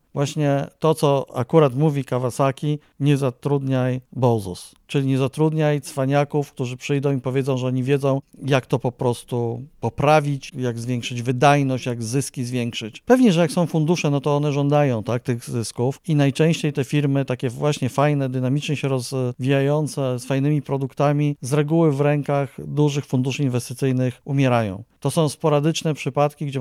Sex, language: male, Polish